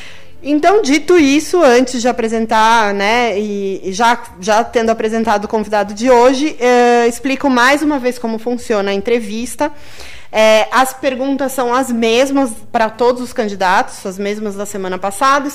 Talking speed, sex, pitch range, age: 150 wpm, female, 215-260 Hz, 20-39